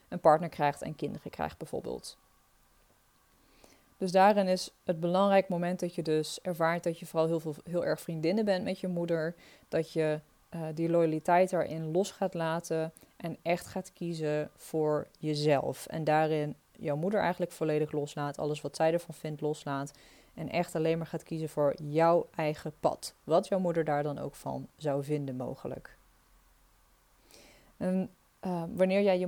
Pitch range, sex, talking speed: 155-190 Hz, female, 165 wpm